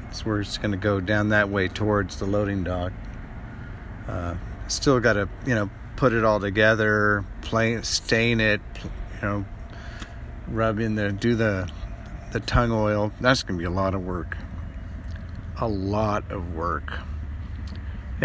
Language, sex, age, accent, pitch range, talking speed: English, male, 50-69, American, 90-115 Hz, 160 wpm